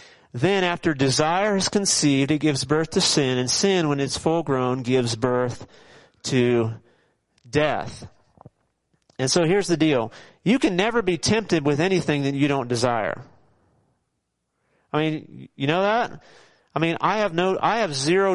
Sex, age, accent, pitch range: male, 40-59, American, 135-185 Hz